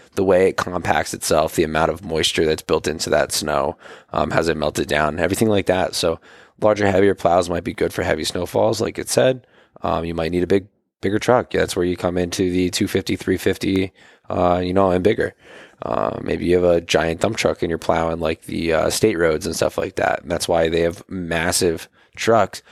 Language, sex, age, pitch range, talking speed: English, male, 20-39, 85-105 Hz, 225 wpm